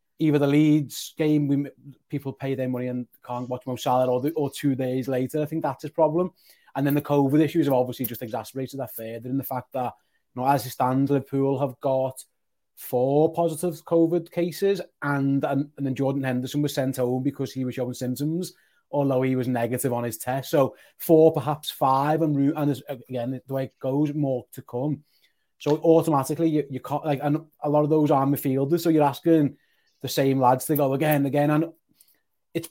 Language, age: English, 30-49